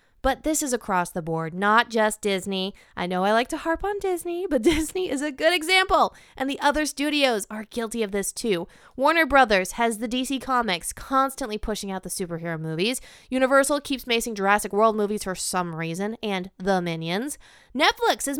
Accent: American